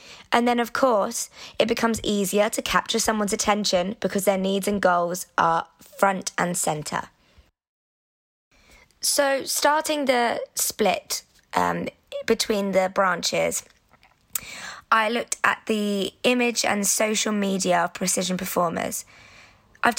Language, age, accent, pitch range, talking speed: English, 20-39, British, 190-235 Hz, 120 wpm